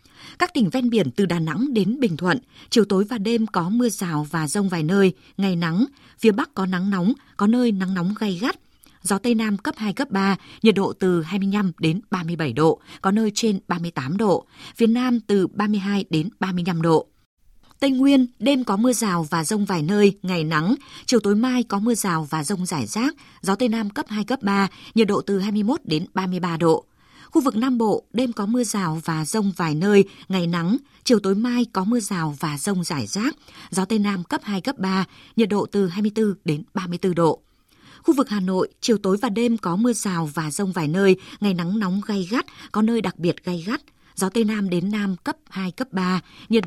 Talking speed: 220 wpm